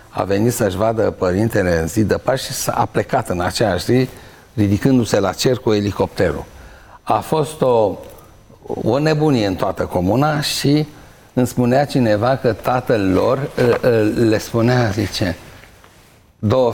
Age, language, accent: 60-79, Romanian, native